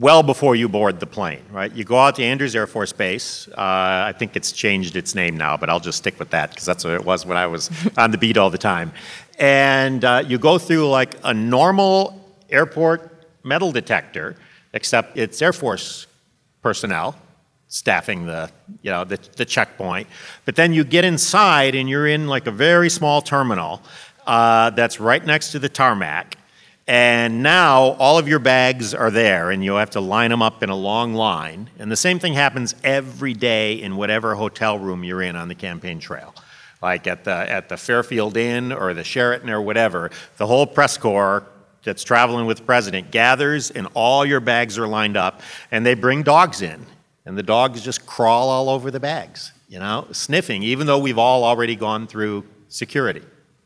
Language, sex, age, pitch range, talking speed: English, male, 50-69, 110-140 Hz, 195 wpm